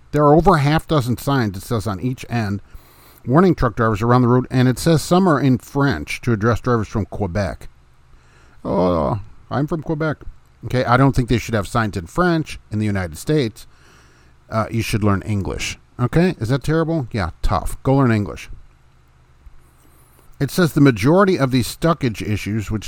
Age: 50-69